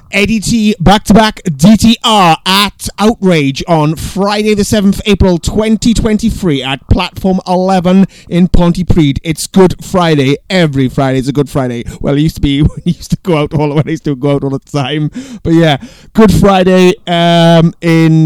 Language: English